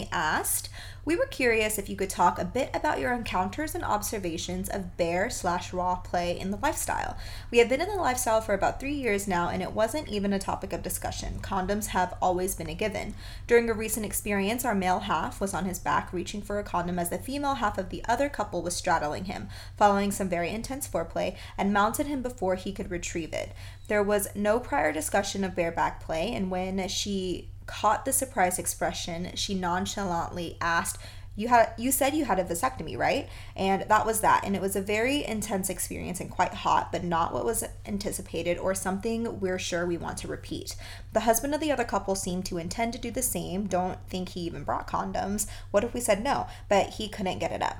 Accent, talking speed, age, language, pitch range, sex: American, 215 wpm, 20-39, English, 175-225 Hz, female